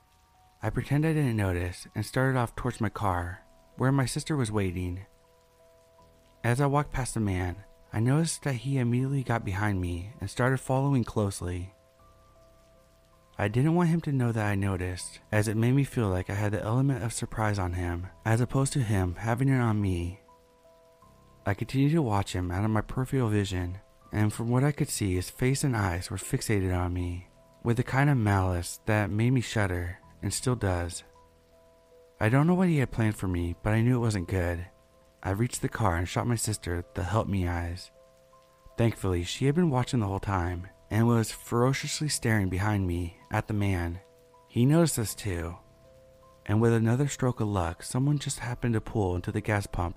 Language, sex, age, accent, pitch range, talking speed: English, male, 30-49, American, 90-130 Hz, 195 wpm